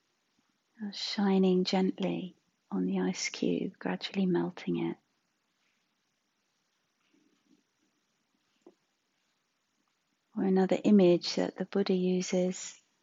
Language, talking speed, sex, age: English, 75 wpm, female, 40-59